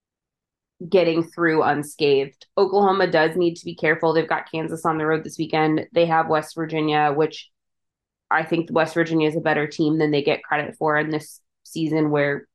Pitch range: 155-195 Hz